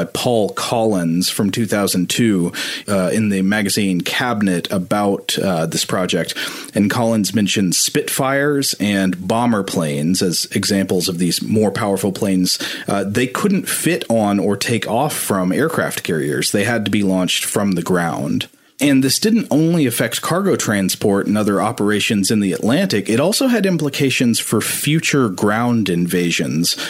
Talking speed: 150 wpm